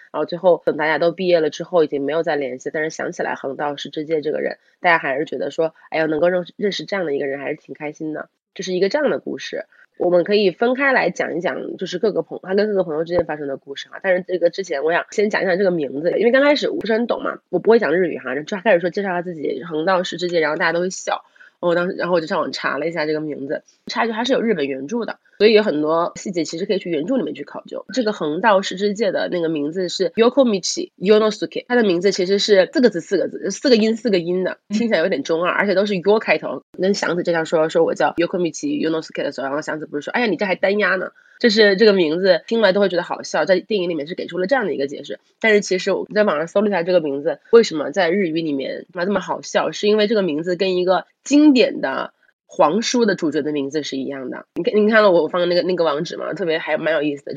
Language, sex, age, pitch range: Chinese, female, 20-39, 160-205 Hz